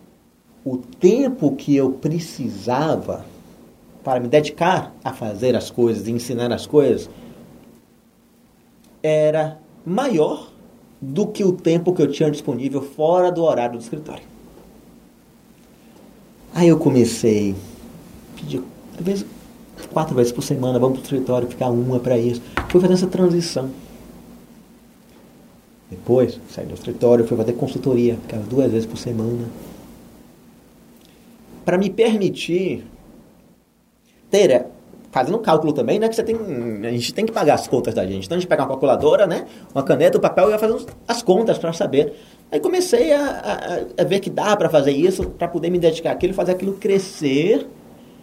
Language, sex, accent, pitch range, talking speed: Portuguese, male, Brazilian, 125-200 Hz, 155 wpm